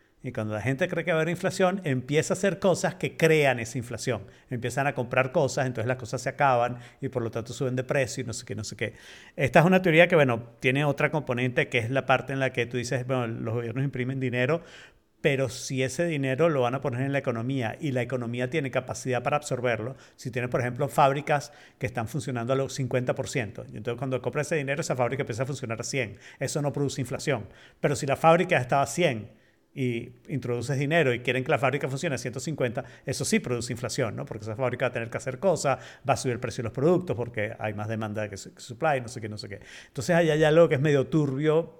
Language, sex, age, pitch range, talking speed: Spanish, male, 50-69, 125-160 Hz, 245 wpm